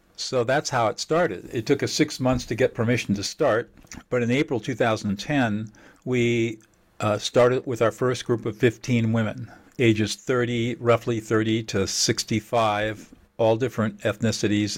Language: English